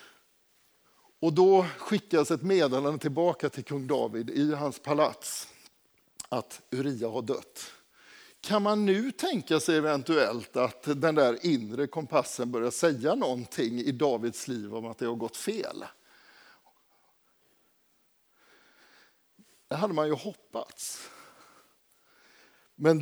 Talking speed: 115 wpm